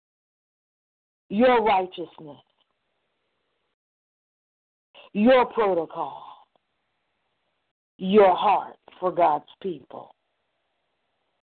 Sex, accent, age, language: female, American, 50-69, English